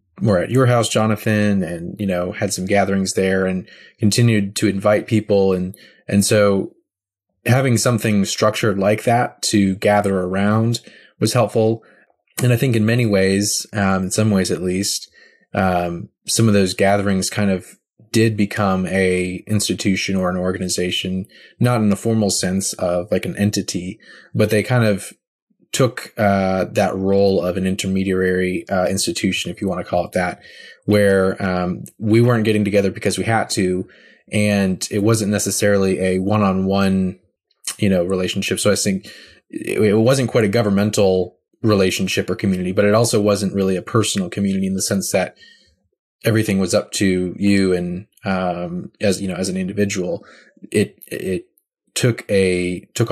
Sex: male